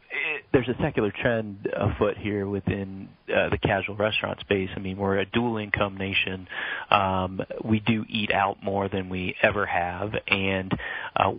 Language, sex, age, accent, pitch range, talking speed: English, male, 40-59, American, 95-105 Hz, 160 wpm